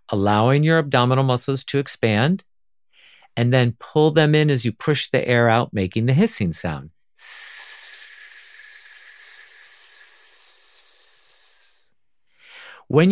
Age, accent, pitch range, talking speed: 50-69, American, 115-175 Hz, 100 wpm